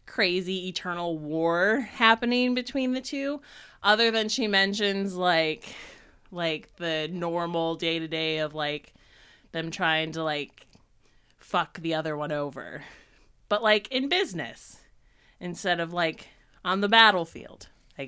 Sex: female